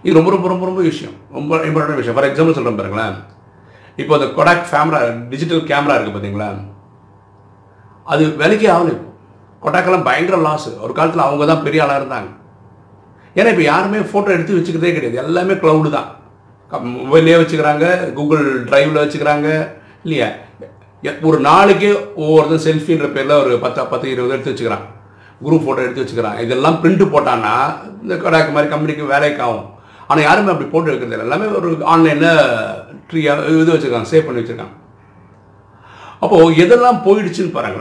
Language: Tamil